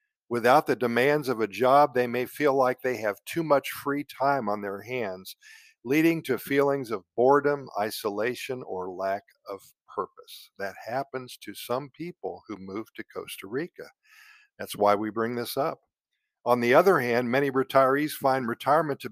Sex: male